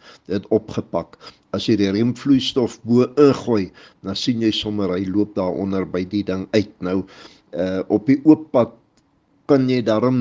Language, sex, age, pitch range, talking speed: English, male, 60-79, 100-125 Hz, 160 wpm